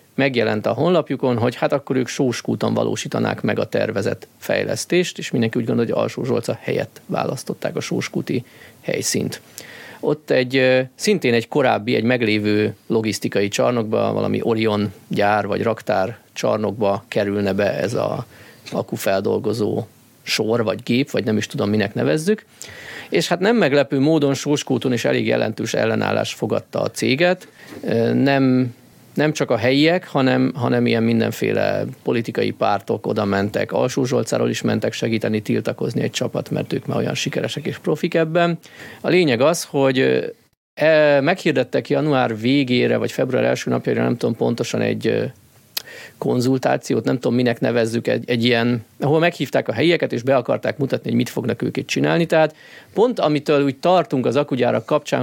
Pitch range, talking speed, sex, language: 115-150 Hz, 150 wpm, male, Hungarian